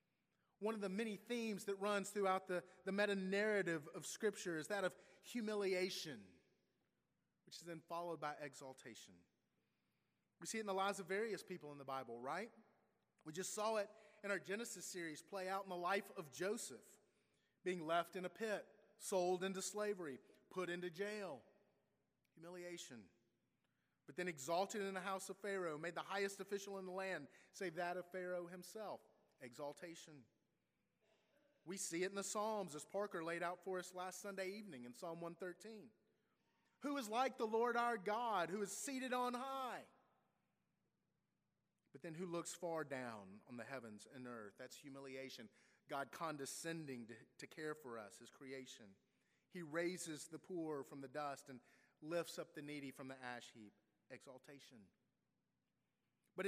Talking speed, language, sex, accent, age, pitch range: 165 wpm, English, male, American, 30-49, 150-200 Hz